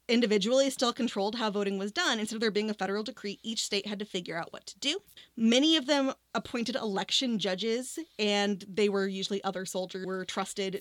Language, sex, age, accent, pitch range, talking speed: English, female, 20-39, American, 200-280 Hz, 205 wpm